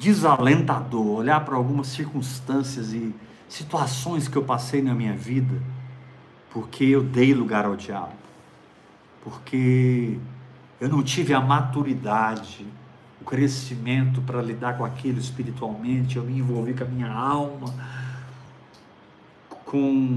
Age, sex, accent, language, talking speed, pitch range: 50-69, male, Brazilian, Portuguese, 120 wpm, 125-145 Hz